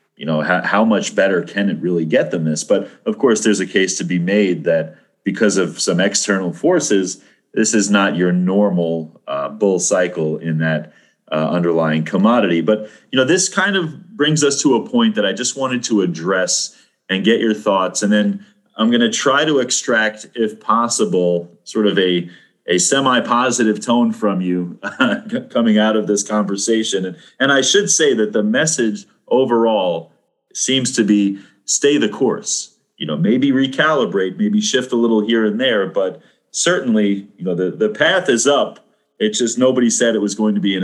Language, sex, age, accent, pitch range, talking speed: English, male, 30-49, American, 95-135 Hz, 190 wpm